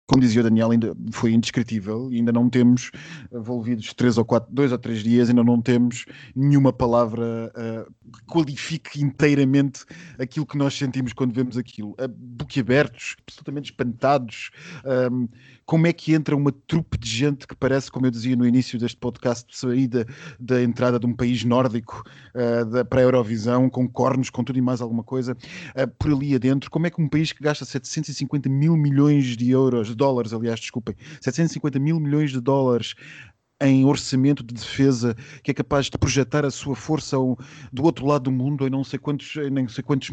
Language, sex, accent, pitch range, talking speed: Portuguese, male, Portuguese, 120-140 Hz, 190 wpm